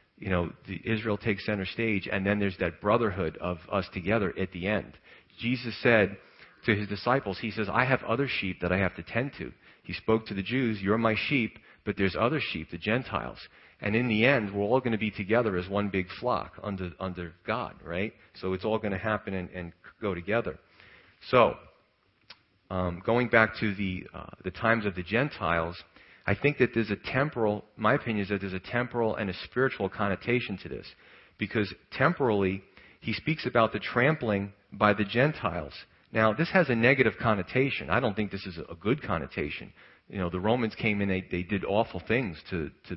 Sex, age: male, 40-59